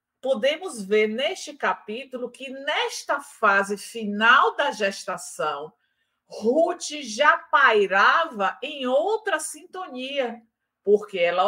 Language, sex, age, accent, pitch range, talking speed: Portuguese, female, 50-69, Brazilian, 185-275 Hz, 95 wpm